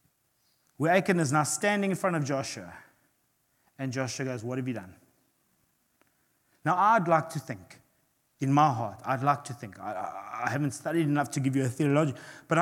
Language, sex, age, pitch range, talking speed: English, male, 30-49, 140-185 Hz, 185 wpm